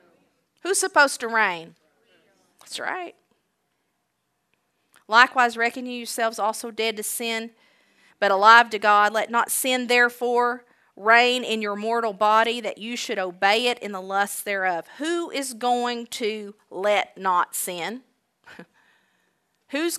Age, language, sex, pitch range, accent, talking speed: 40-59, English, female, 190-245 Hz, American, 130 wpm